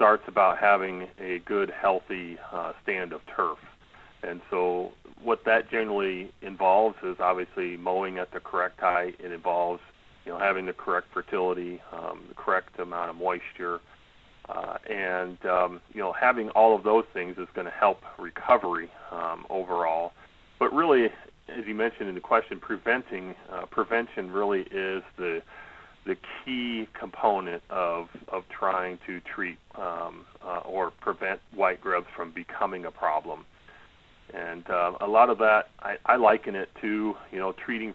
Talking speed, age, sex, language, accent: 160 wpm, 40-59, male, English, American